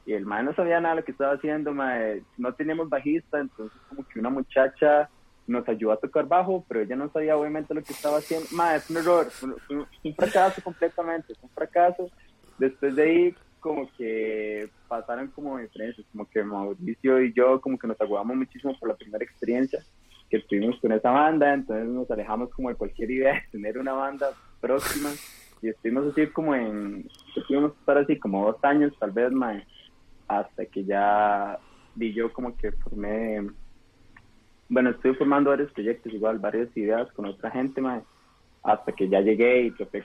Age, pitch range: 20-39, 110-145 Hz